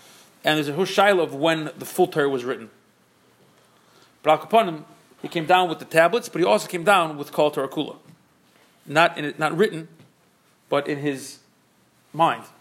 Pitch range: 140-180 Hz